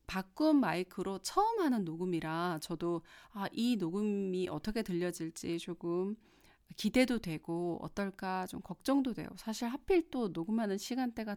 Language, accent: Korean, native